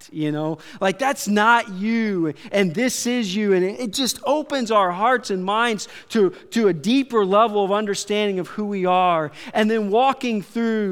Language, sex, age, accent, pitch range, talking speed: English, male, 40-59, American, 175-225 Hz, 180 wpm